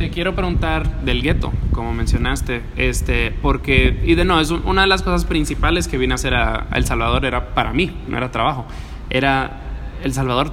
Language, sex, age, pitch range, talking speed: English, male, 20-39, 115-150 Hz, 195 wpm